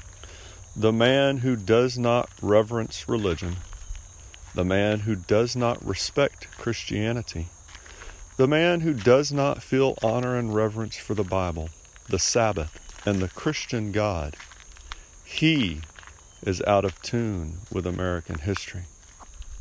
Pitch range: 85-115 Hz